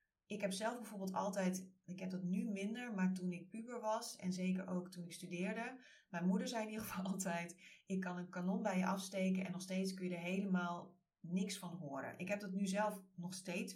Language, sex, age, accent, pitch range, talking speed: Dutch, female, 30-49, Dutch, 170-200 Hz, 225 wpm